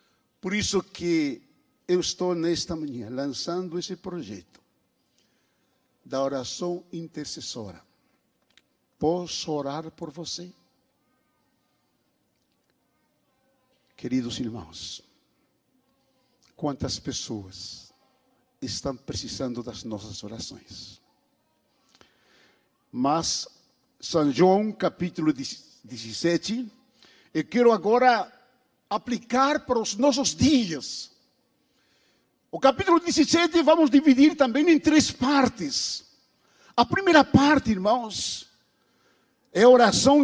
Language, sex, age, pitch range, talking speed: Portuguese, male, 60-79, 155-265 Hz, 80 wpm